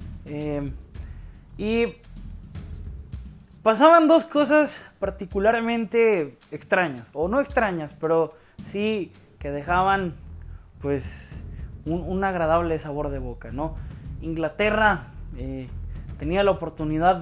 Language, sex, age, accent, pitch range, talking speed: Spanish, male, 20-39, Mexican, 130-195 Hz, 85 wpm